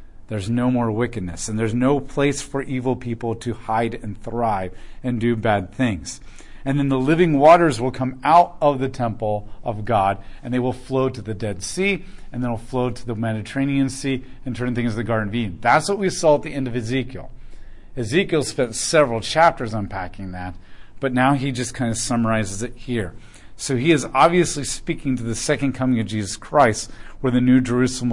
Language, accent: English, American